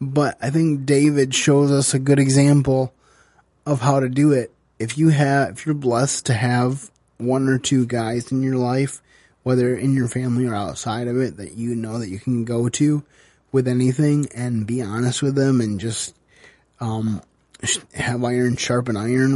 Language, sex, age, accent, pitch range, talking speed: English, male, 20-39, American, 115-135 Hz, 190 wpm